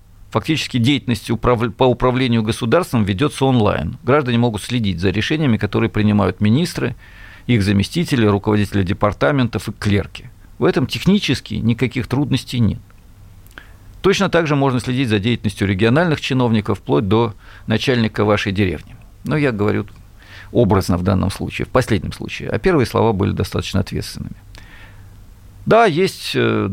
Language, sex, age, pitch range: Russian, male, 50-69, 100-125 Hz